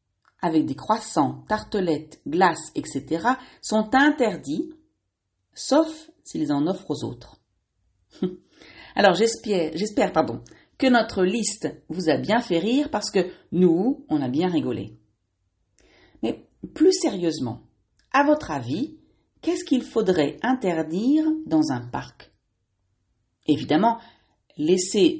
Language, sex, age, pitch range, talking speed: French, female, 40-59, 150-225 Hz, 115 wpm